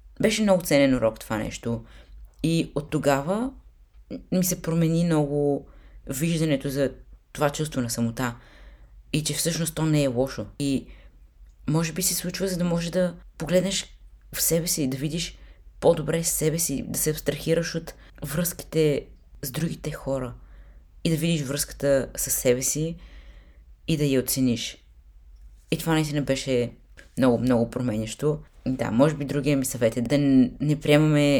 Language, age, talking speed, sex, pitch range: Bulgarian, 20-39, 155 wpm, female, 115-160 Hz